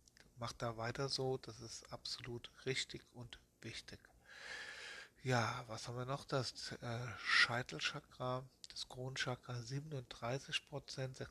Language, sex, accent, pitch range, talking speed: German, male, German, 120-135 Hz, 110 wpm